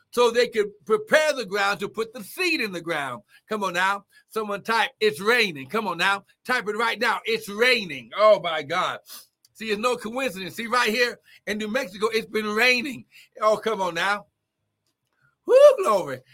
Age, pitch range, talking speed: 60-79, 185-245 Hz, 185 wpm